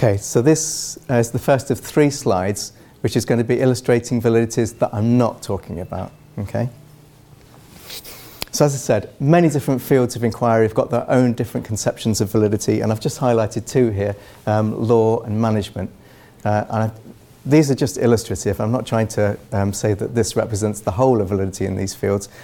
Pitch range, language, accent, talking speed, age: 105-130 Hz, English, British, 195 wpm, 30-49